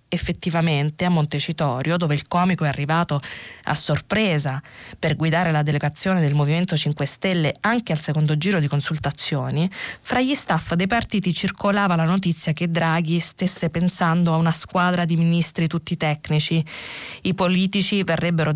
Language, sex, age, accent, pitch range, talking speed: Italian, female, 20-39, native, 155-190 Hz, 150 wpm